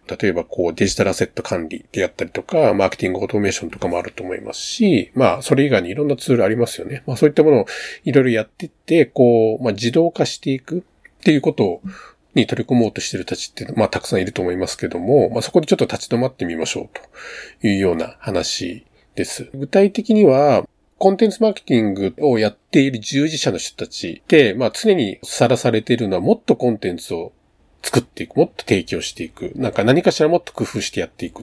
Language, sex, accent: Japanese, male, native